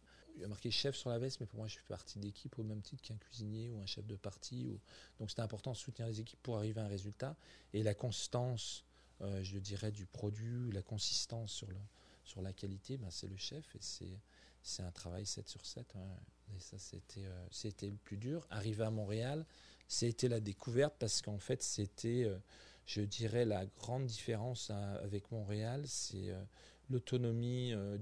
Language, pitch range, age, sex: French, 95-115 Hz, 40-59, male